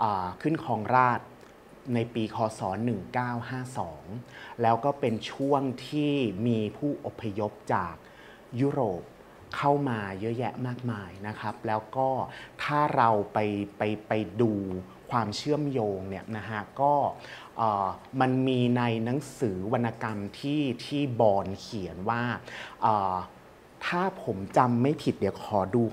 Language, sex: Thai, male